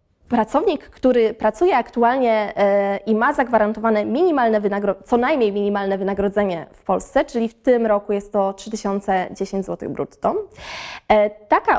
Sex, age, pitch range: female, 20-39, 215-265 Hz